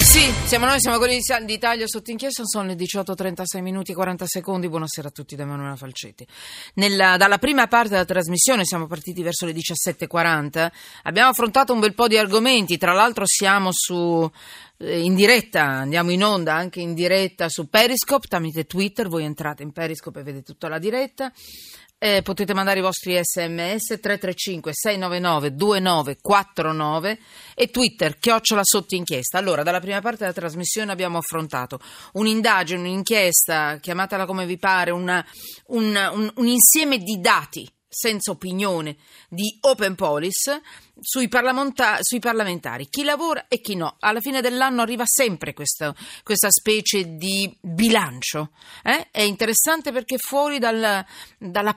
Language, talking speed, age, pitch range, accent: Italian, 150 wpm, 40-59, 175-225 Hz, native